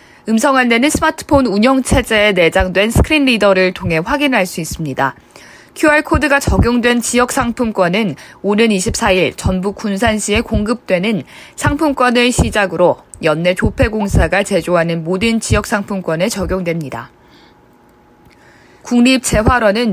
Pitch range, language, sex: 190-250 Hz, Korean, female